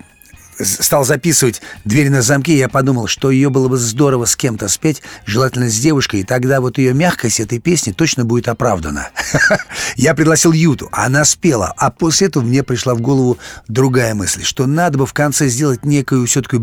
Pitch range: 105-135 Hz